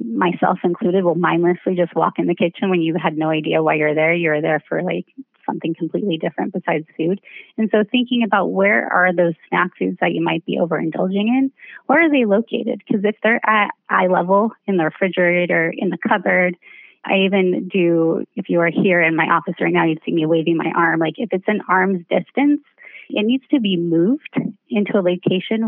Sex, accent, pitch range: female, American, 170-215 Hz